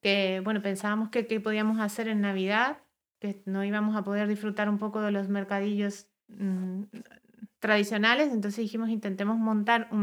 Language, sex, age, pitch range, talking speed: Spanish, female, 30-49, 200-230 Hz, 160 wpm